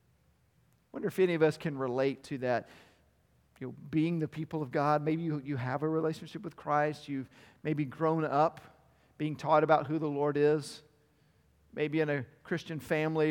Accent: American